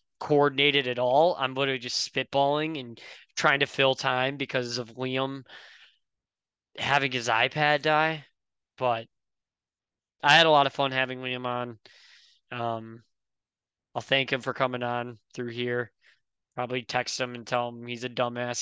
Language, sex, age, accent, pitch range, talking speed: English, male, 20-39, American, 125-140 Hz, 150 wpm